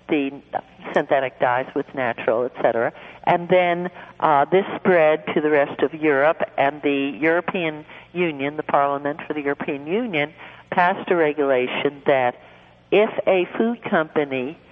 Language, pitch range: English, 145-185 Hz